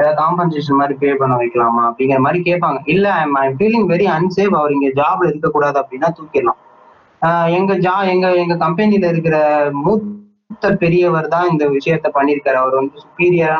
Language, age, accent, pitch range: Tamil, 20-39, native, 150-195 Hz